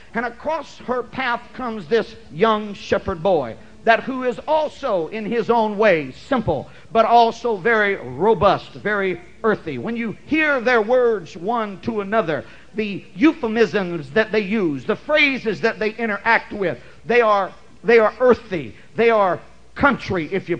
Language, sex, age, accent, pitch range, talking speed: English, male, 50-69, American, 195-240 Hz, 155 wpm